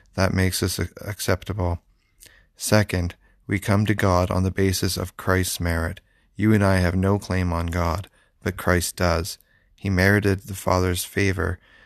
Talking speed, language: 155 wpm, English